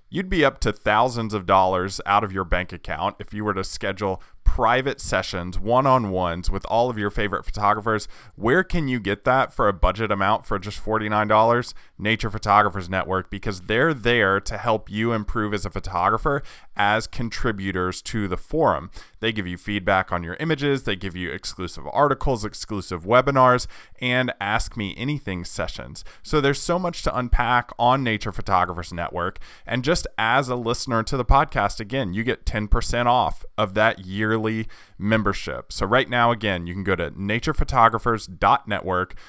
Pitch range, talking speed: 95-120 Hz, 170 wpm